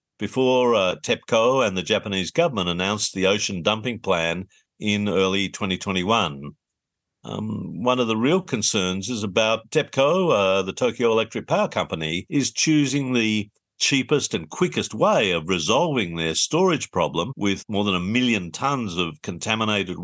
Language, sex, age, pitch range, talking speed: English, male, 50-69, 95-120 Hz, 150 wpm